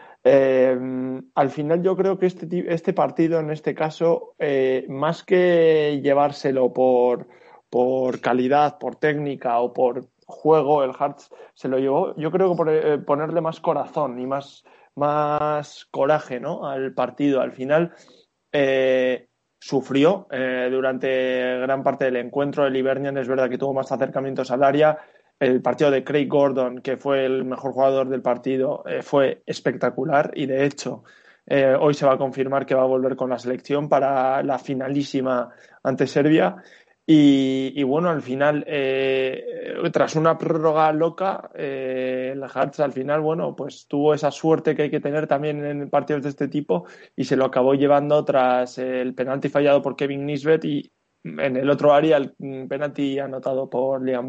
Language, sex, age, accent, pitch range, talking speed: Spanish, male, 20-39, Spanish, 130-150 Hz, 170 wpm